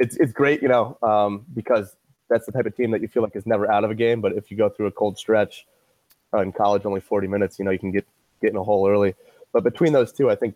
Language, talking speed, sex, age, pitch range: English, 295 wpm, male, 20-39, 100-125 Hz